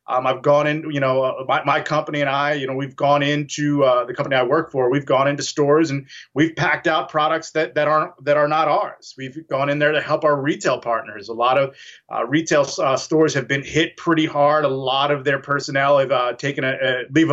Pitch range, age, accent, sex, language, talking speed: 140-160 Hz, 30-49, American, male, English, 245 wpm